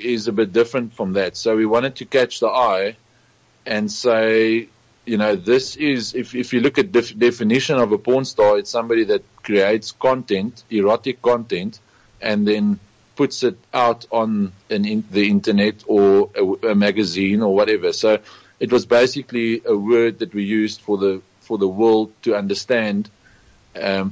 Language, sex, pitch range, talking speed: English, male, 100-120 Hz, 175 wpm